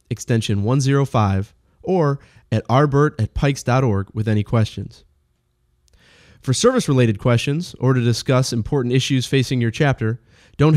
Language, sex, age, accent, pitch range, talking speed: English, male, 30-49, American, 105-135 Hz, 125 wpm